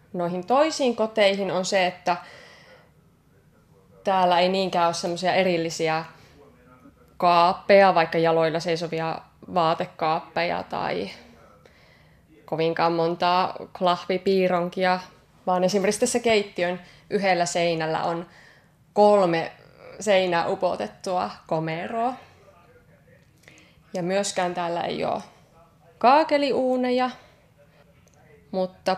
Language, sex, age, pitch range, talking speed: Finnish, female, 20-39, 170-205 Hz, 80 wpm